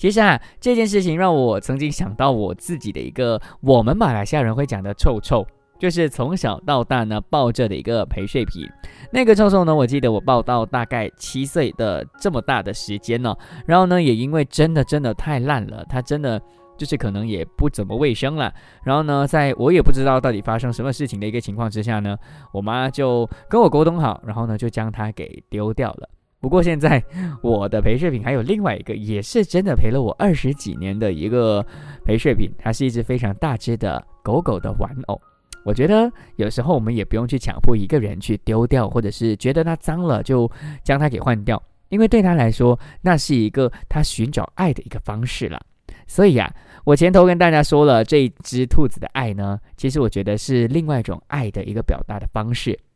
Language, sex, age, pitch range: English, male, 20-39, 110-150 Hz